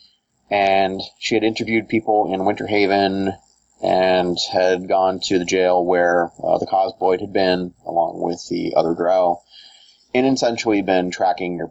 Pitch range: 85-100 Hz